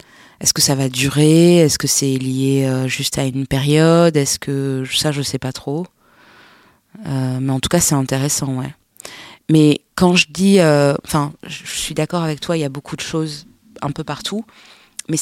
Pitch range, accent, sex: 135-160 Hz, French, female